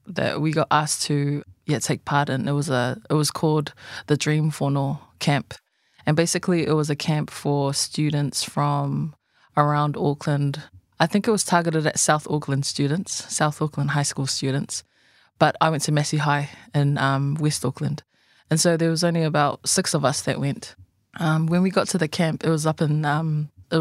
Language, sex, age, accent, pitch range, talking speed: English, female, 20-39, Australian, 145-160 Hz, 200 wpm